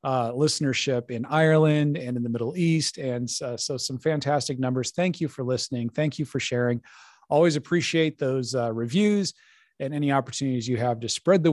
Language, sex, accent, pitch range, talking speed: English, male, American, 120-160 Hz, 185 wpm